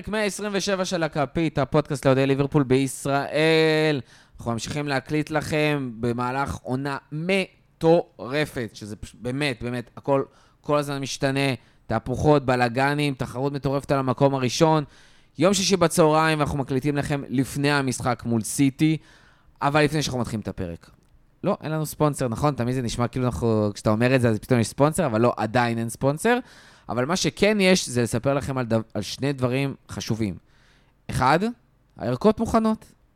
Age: 20-39